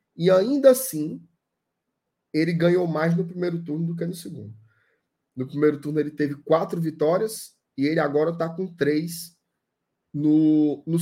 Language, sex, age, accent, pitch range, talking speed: Portuguese, male, 20-39, Brazilian, 135-170 Hz, 150 wpm